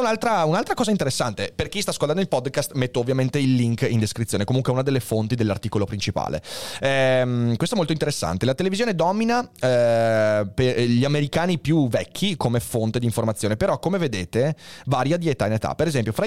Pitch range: 110-150 Hz